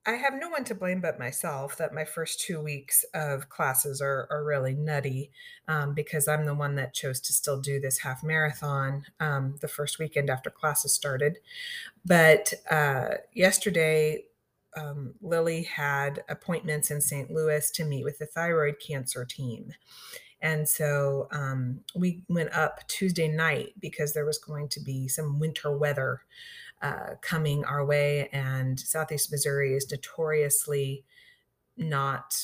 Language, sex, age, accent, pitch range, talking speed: English, female, 30-49, American, 140-160 Hz, 155 wpm